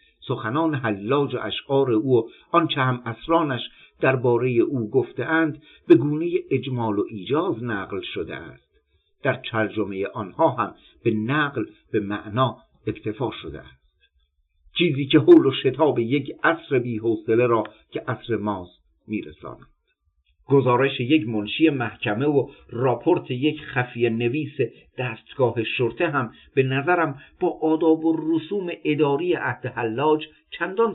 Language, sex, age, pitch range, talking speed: Persian, male, 50-69, 110-155 Hz, 130 wpm